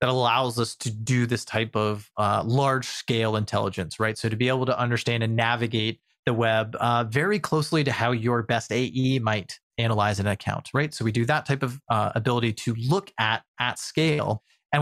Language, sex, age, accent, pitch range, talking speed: English, male, 30-49, American, 120-155 Hz, 205 wpm